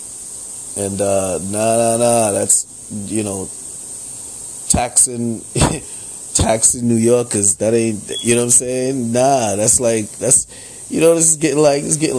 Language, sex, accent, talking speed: English, male, American, 160 wpm